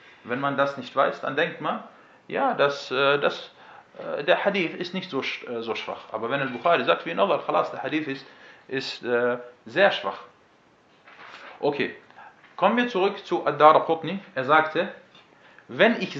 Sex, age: male, 40-59